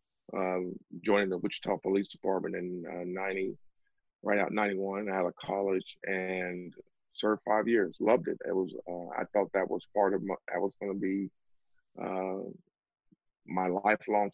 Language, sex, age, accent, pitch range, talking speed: English, male, 40-59, American, 95-105 Hz, 165 wpm